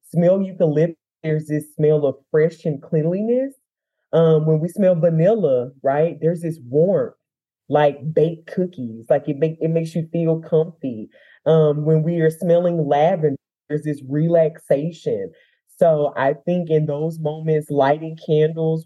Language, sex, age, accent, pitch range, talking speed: English, male, 20-39, American, 145-165 Hz, 145 wpm